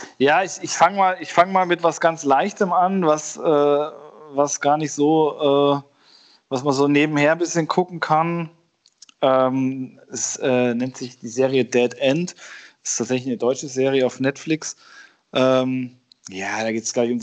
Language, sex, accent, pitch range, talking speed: German, male, German, 130-160 Hz, 165 wpm